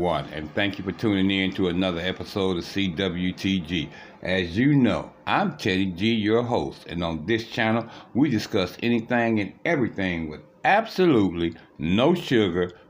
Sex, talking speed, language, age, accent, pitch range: male, 150 wpm, English, 60-79, American, 95-115 Hz